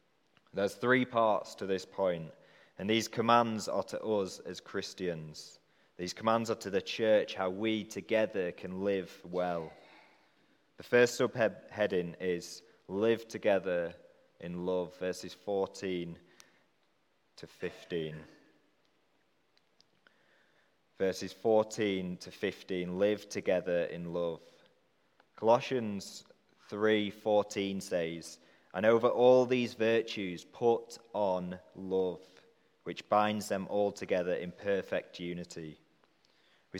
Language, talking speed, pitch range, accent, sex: English, 110 wpm, 90-115 Hz, British, male